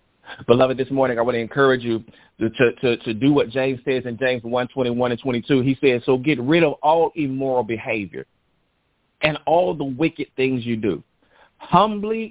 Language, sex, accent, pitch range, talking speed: English, male, American, 130-175 Hz, 180 wpm